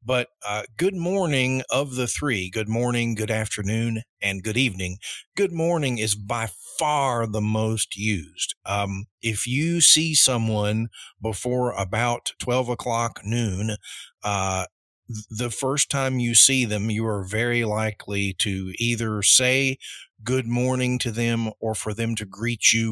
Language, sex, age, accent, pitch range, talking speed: English, male, 50-69, American, 105-125 Hz, 145 wpm